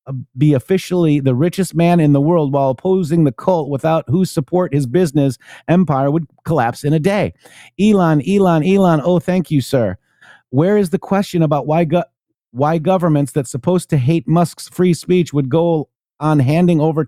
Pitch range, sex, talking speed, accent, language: 140-180 Hz, male, 180 wpm, American, English